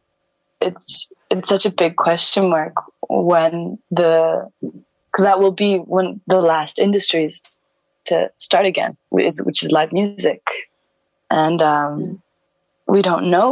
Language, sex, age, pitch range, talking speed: English, female, 20-39, 165-210 Hz, 130 wpm